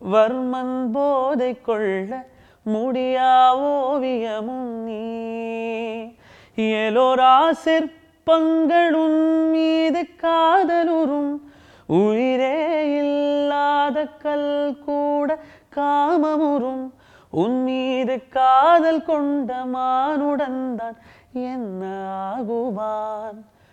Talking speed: 35 wpm